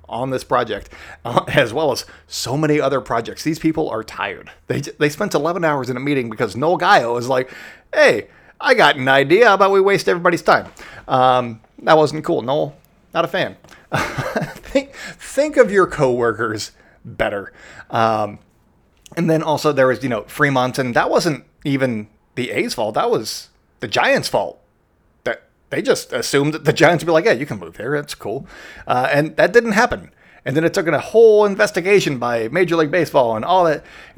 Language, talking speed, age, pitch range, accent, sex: English, 195 wpm, 30-49, 120-165 Hz, American, male